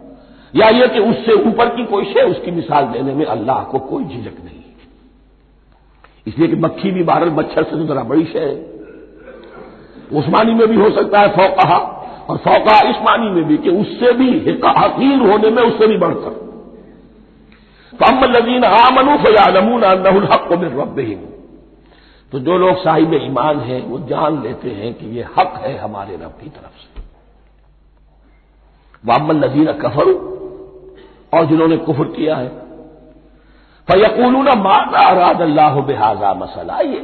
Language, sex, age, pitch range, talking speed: Hindi, male, 50-69, 160-265 Hz, 155 wpm